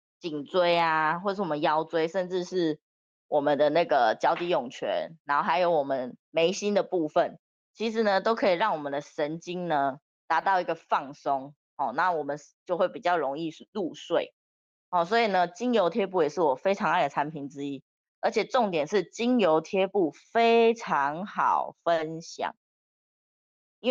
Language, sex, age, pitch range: Chinese, female, 20-39, 150-205 Hz